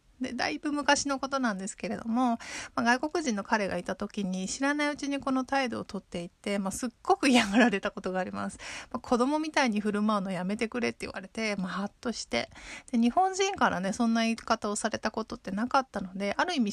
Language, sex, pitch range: Japanese, female, 210-275 Hz